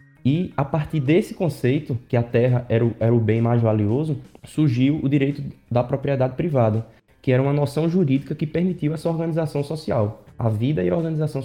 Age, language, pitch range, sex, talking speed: 20-39, Portuguese, 120-150 Hz, male, 185 wpm